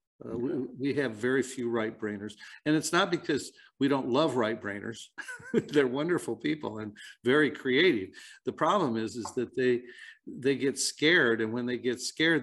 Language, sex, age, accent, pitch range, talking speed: English, male, 50-69, American, 115-130 Hz, 180 wpm